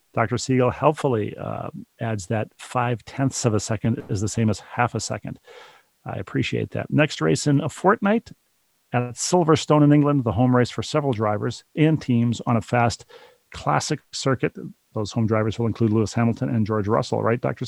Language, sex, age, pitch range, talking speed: English, male, 40-59, 115-145 Hz, 185 wpm